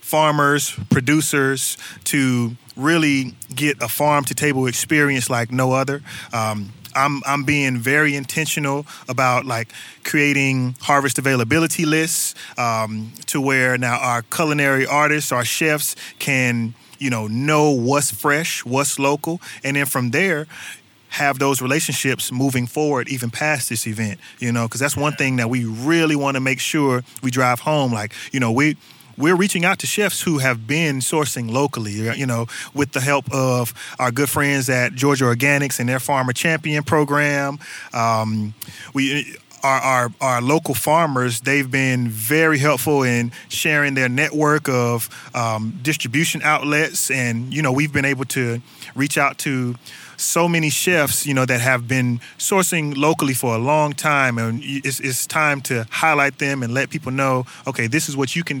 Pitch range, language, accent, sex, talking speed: 125-150 Hz, English, American, male, 165 wpm